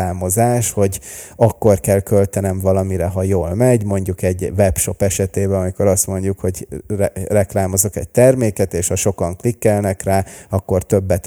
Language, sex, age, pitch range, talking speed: Hungarian, male, 30-49, 95-130 Hz, 145 wpm